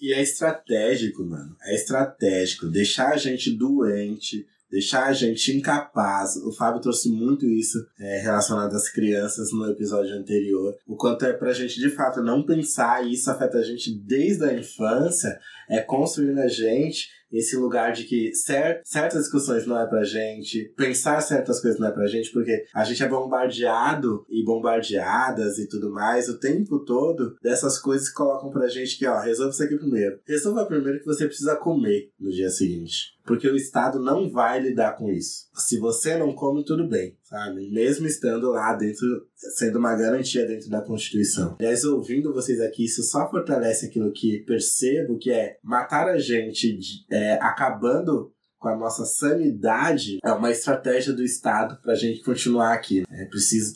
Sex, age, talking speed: male, 20-39, 175 wpm